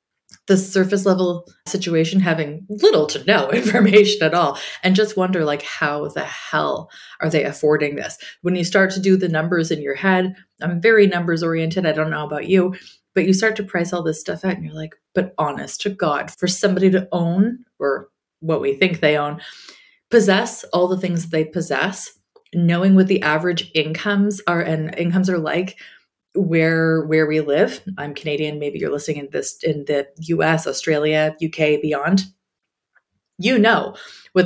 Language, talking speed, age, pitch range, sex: English, 180 wpm, 20-39, 160-210 Hz, female